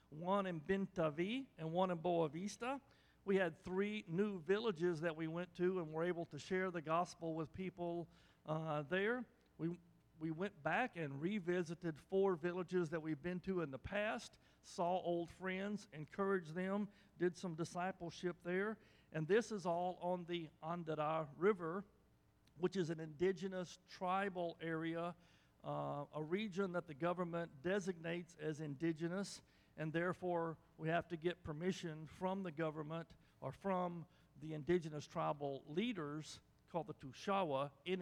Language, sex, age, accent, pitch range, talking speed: English, male, 50-69, American, 155-185 Hz, 150 wpm